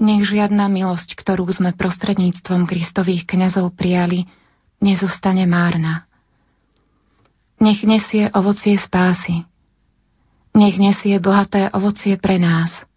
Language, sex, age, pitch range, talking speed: Slovak, female, 30-49, 175-205 Hz, 95 wpm